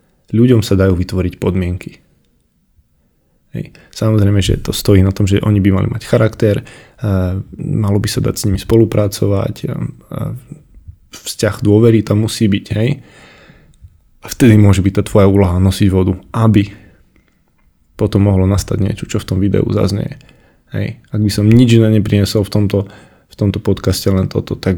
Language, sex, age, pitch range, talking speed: Slovak, male, 20-39, 95-110 Hz, 155 wpm